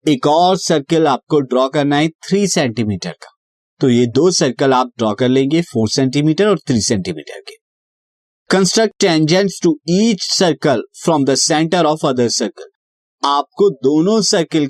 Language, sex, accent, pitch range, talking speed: Hindi, male, native, 135-180 Hz, 150 wpm